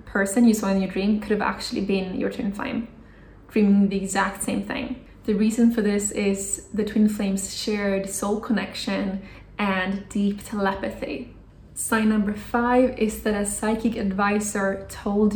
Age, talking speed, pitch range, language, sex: 20-39, 160 wpm, 195-220 Hz, English, female